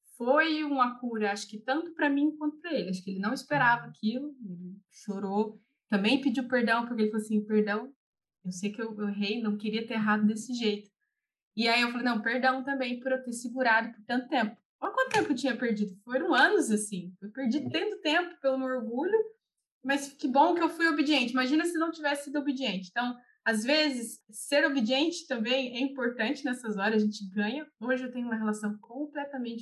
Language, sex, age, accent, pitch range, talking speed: Portuguese, female, 20-39, Brazilian, 210-270 Hz, 205 wpm